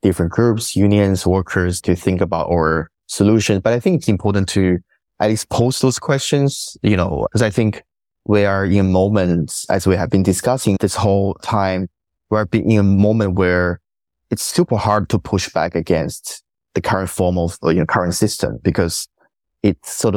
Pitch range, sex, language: 90-110 Hz, male, English